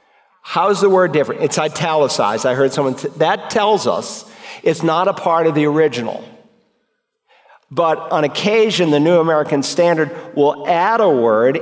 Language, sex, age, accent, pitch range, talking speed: English, male, 50-69, American, 140-175 Hz, 165 wpm